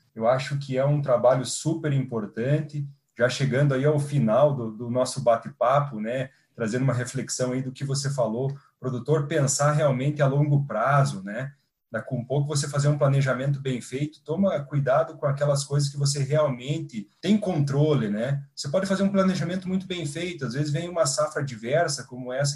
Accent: Brazilian